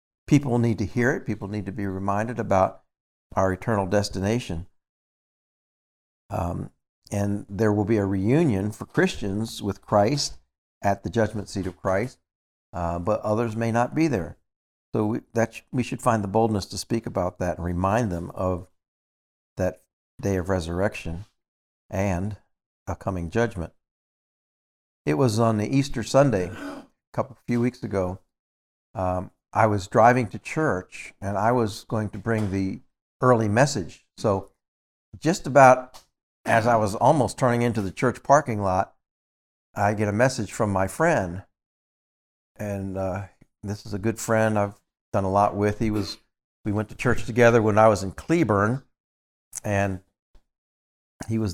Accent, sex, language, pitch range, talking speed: American, male, English, 95-115 Hz, 155 wpm